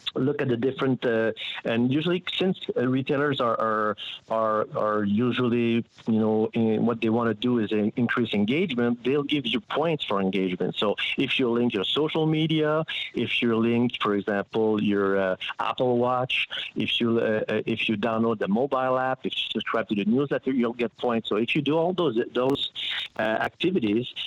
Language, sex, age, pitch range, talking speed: English, male, 50-69, 105-125 Hz, 185 wpm